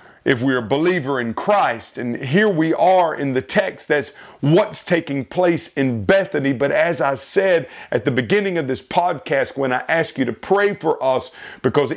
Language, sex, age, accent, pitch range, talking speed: English, male, 50-69, American, 135-175 Hz, 190 wpm